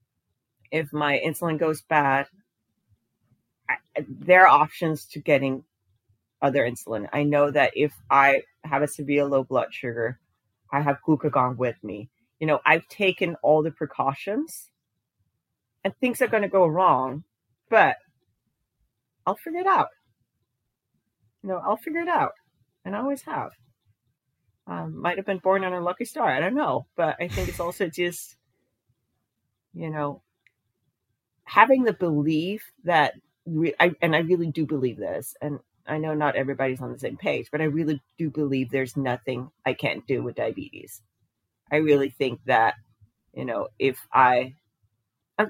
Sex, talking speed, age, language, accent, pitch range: female, 155 wpm, 40-59, English, American, 120-160 Hz